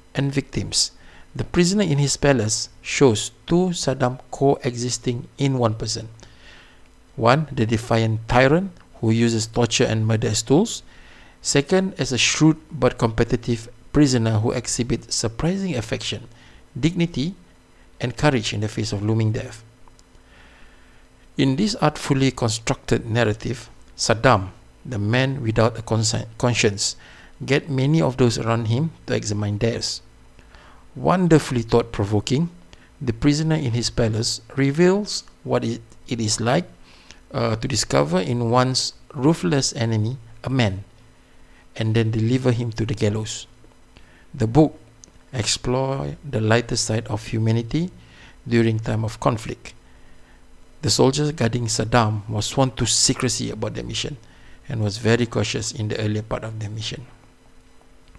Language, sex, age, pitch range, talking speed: Malay, male, 50-69, 110-135 Hz, 135 wpm